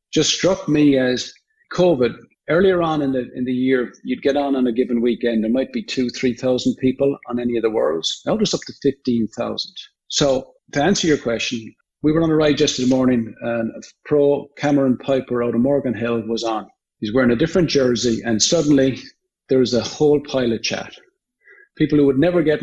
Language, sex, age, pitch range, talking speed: English, male, 50-69, 120-145 Hz, 210 wpm